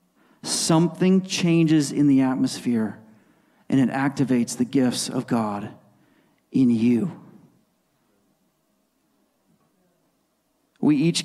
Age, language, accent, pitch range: 40-59, English, American, 135-210 Hz